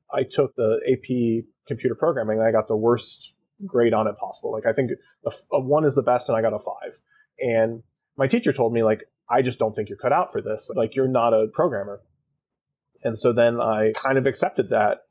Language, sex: English, male